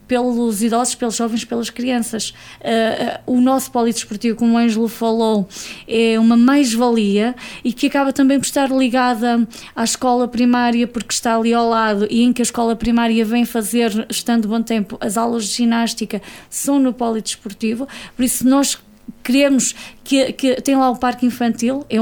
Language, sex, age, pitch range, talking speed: Portuguese, female, 20-39, 230-260 Hz, 165 wpm